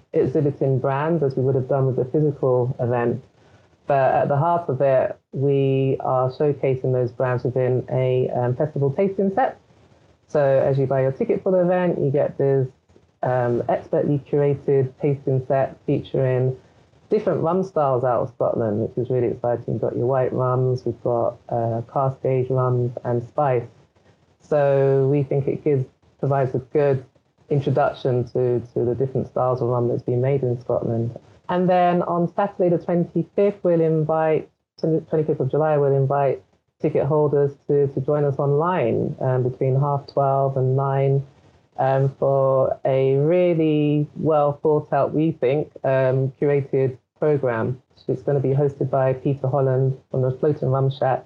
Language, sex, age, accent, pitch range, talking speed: English, female, 20-39, British, 130-150 Hz, 165 wpm